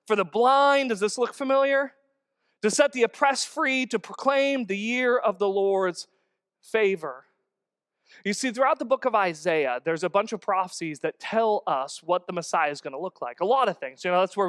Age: 30-49